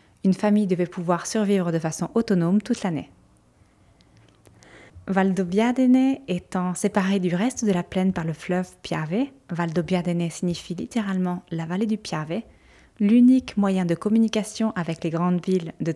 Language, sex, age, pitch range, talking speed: French, female, 20-39, 170-205 Hz, 145 wpm